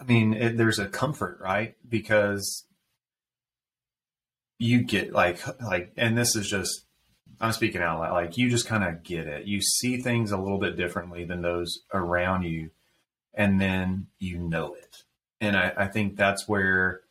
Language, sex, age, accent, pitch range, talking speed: English, male, 30-49, American, 95-110 Hz, 170 wpm